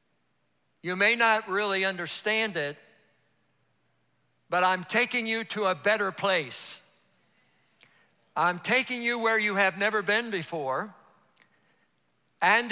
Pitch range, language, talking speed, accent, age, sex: 155-215 Hz, English, 115 wpm, American, 60-79, male